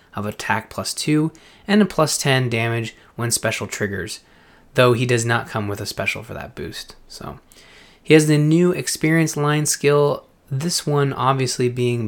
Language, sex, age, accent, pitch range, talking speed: English, male, 20-39, American, 105-140 Hz, 175 wpm